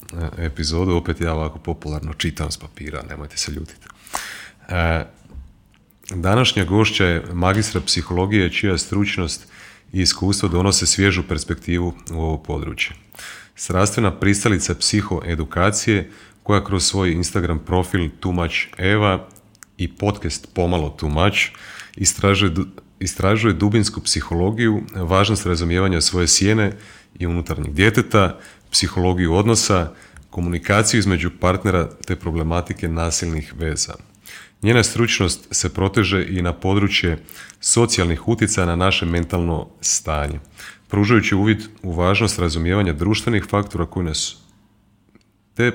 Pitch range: 85-100 Hz